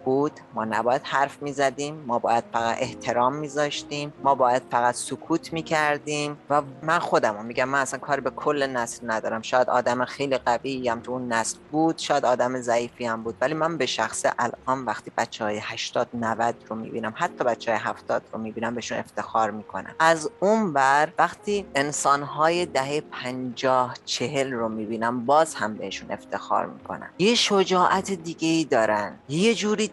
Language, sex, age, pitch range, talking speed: English, female, 30-49, 120-155 Hz, 170 wpm